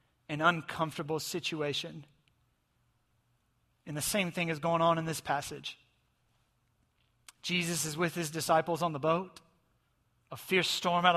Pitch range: 160-215 Hz